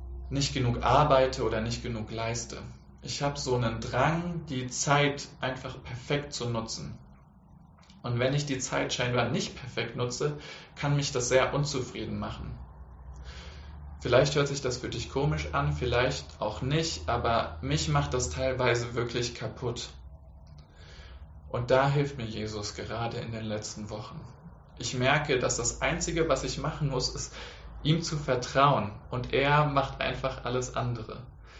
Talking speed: 150 wpm